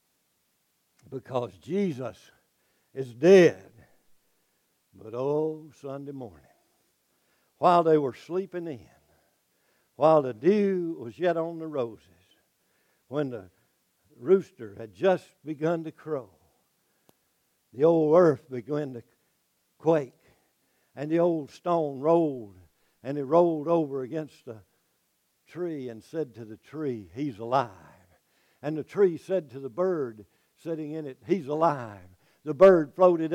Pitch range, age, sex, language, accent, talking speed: 140-195 Hz, 60-79, male, English, American, 125 wpm